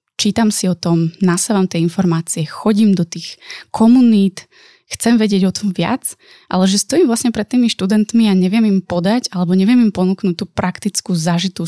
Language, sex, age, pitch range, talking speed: Slovak, female, 20-39, 175-210 Hz, 175 wpm